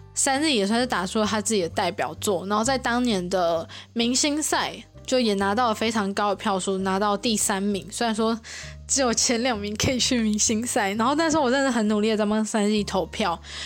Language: Chinese